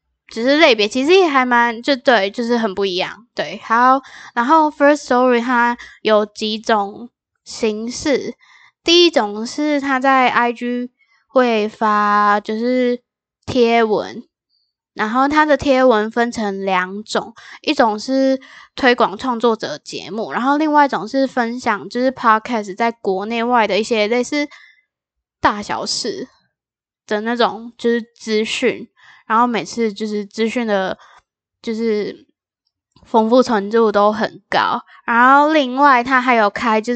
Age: 10-29